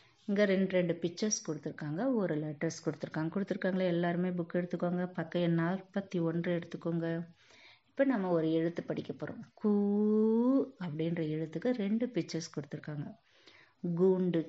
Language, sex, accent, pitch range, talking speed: Tamil, female, native, 165-220 Hz, 115 wpm